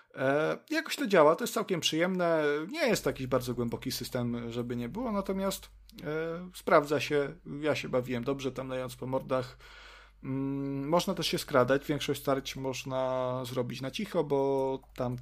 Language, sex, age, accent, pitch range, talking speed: Polish, male, 30-49, native, 125-145 Hz, 165 wpm